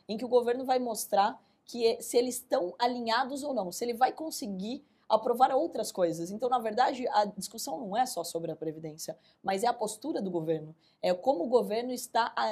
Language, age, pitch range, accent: Portuguese, 20-39, 185-250 Hz, Brazilian